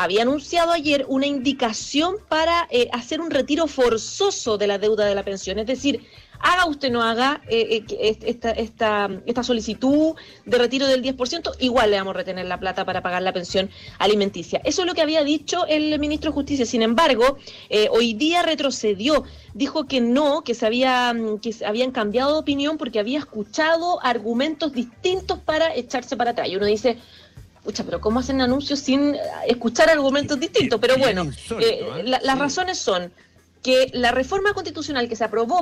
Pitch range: 230-310 Hz